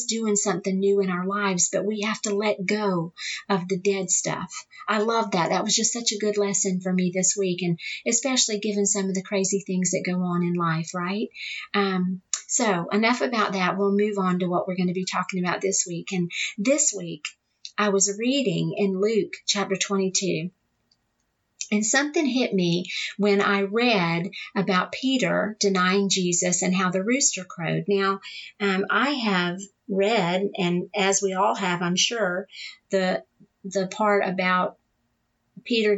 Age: 40-59